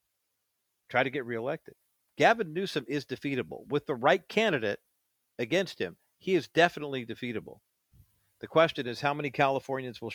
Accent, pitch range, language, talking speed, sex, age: American, 125-170 Hz, English, 150 wpm, male, 50-69